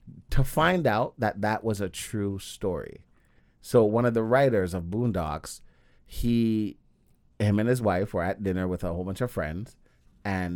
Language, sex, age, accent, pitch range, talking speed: English, male, 30-49, American, 90-110 Hz, 175 wpm